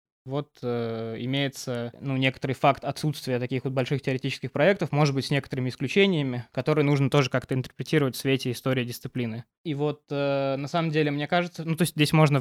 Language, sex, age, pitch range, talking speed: Russian, male, 20-39, 125-145 Hz, 190 wpm